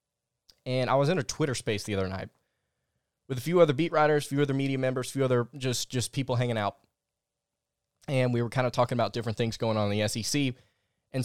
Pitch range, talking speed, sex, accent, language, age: 115-150 Hz, 235 wpm, male, American, English, 20-39